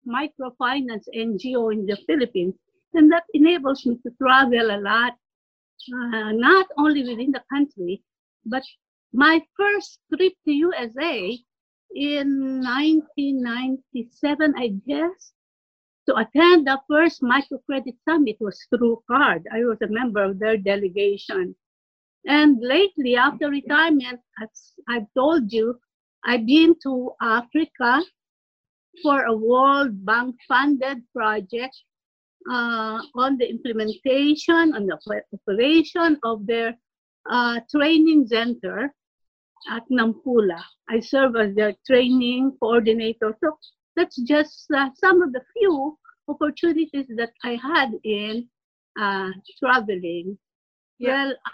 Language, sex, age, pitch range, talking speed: English, female, 50-69, 235-300 Hz, 115 wpm